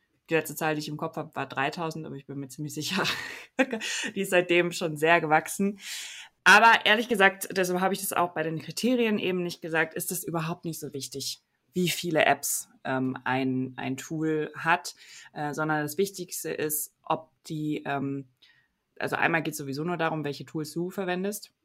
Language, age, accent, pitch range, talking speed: German, 20-39, German, 140-180 Hz, 190 wpm